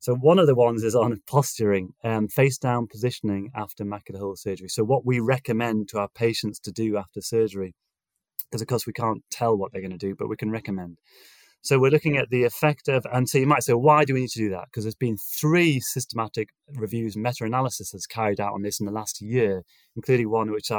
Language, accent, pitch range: English, British, 105-130 Hz